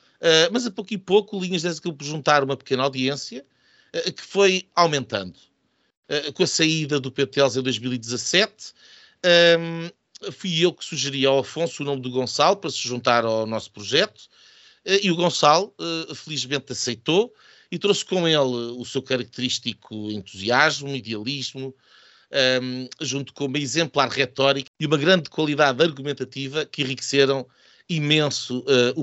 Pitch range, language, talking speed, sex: 125-160 Hz, Portuguese, 155 wpm, male